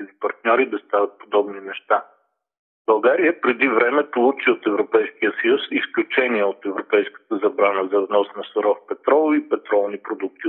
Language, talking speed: Bulgarian, 145 wpm